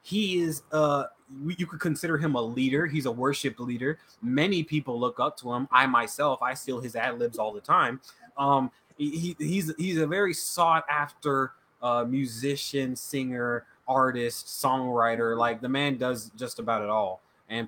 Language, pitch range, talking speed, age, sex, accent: English, 125-160 Hz, 175 wpm, 20-39, male, American